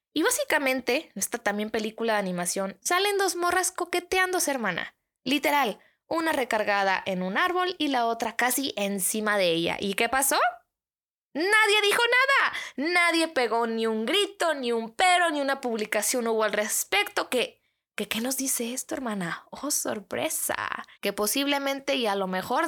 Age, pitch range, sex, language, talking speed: 20-39, 200-275 Hz, female, Spanish, 160 wpm